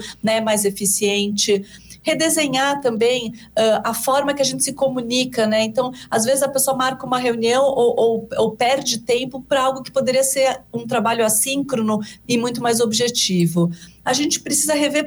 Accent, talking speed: Brazilian, 165 wpm